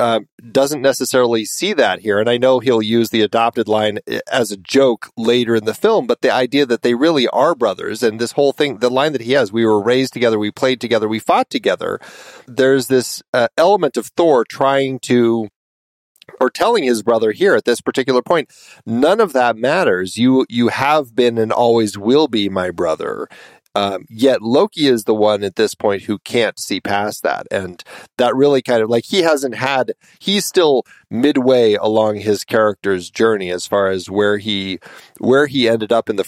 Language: English